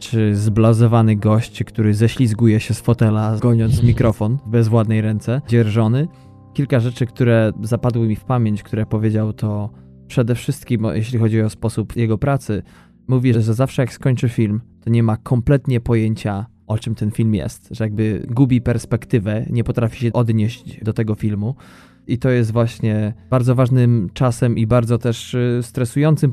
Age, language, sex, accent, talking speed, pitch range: 20-39, Polish, male, native, 155 wpm, 110-120 Hz